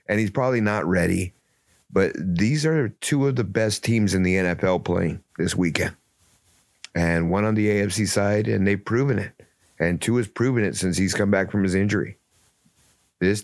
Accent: American